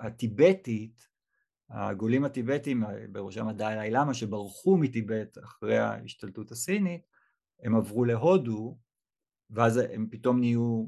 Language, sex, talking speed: Hebrew, male, 100 wpm